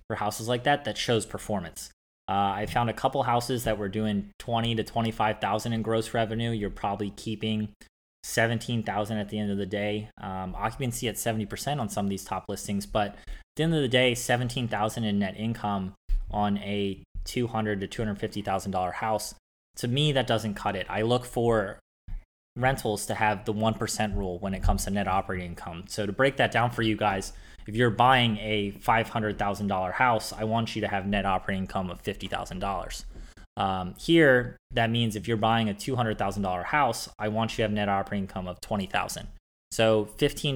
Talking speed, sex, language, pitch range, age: 185 wpm, male, English, 100-115 Hz, 20-39